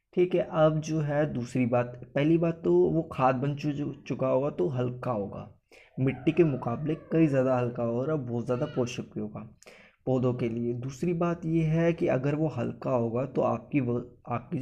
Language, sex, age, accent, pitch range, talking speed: Hindi, male, 20-39, native, 125-155 Hz, 190 wpm